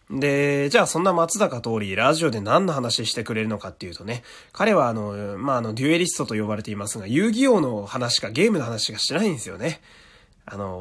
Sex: male